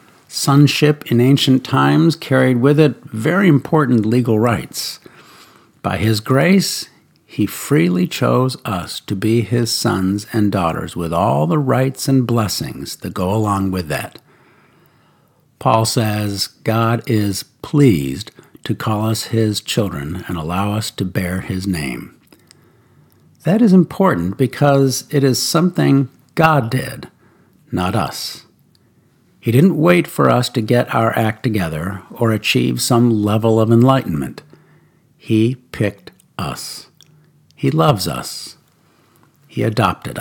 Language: English